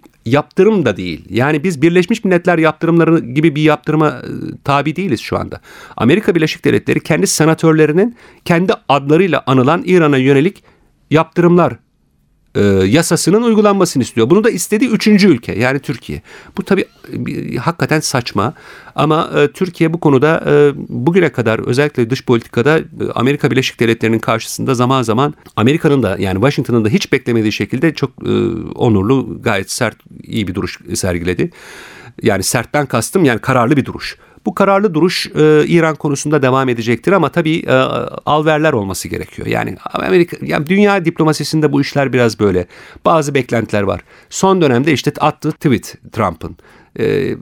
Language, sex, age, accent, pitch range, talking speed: Turkish, male, 50-69, native, 115-165 Hz, 150 wpm